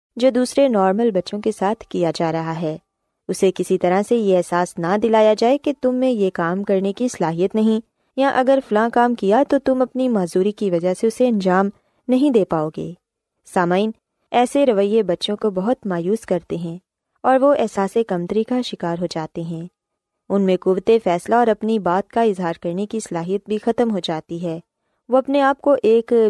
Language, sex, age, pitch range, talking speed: Urdu, female, 20-39, 180-245 Hz, 195 wpm